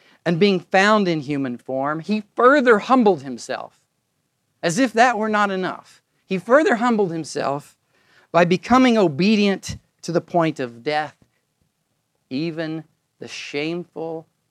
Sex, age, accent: male, 50-69, American